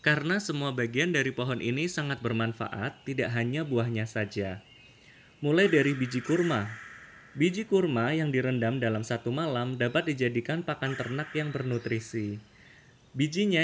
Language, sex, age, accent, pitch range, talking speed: Indonesian, male, 20-39, native, 120-155 Hz, 130 wpm